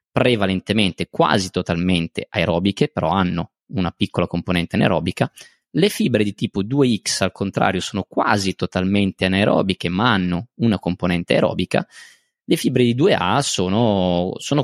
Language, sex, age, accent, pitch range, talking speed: Italian, male, 20-39, native, 90-105 Hz, 130 wpm